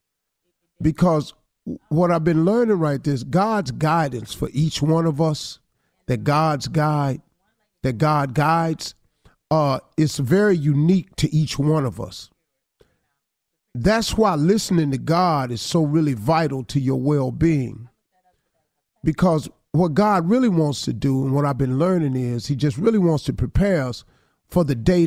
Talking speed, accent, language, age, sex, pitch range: 160 wpm, American, English, 40-59, male, 145-185 Hz